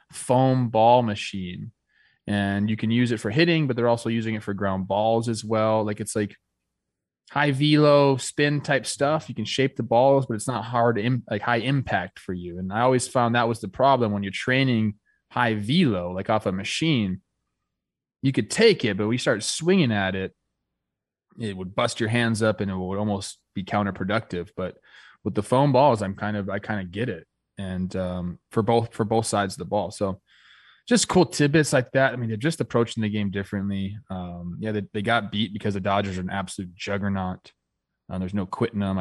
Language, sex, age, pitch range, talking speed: English, male, 20-39, 100-125 Hz, 210 wpm